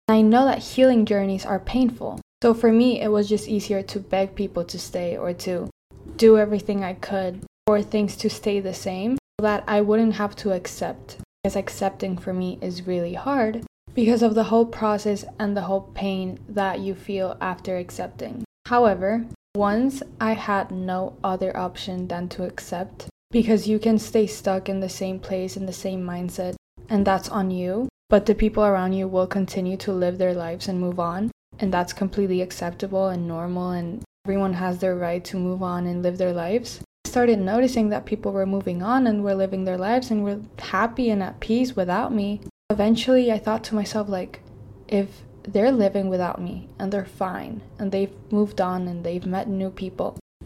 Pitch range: 185-215 Hz